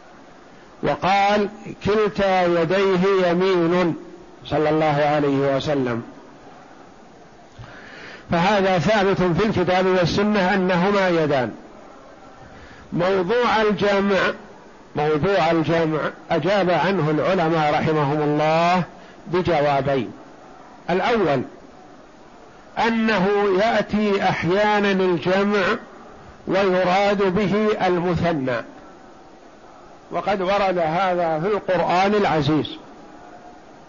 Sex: male